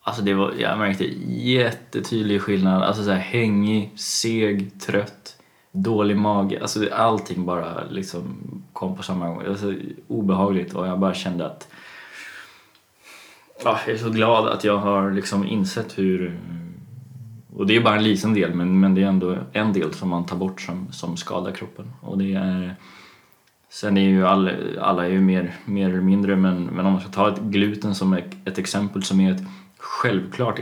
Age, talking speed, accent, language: 20-39, 180 wpm, native, Swedish